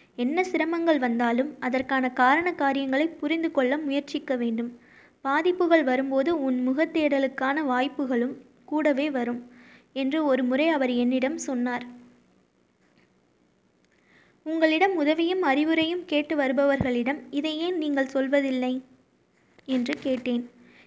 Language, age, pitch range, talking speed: Tamil, 20-39, 255-305 Hz, 85 wpm